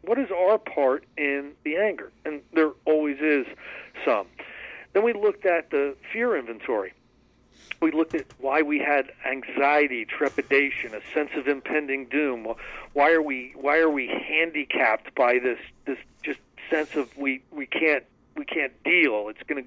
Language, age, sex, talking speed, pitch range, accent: English, 50-69, male, 165 wpm, 130-160 Hz, American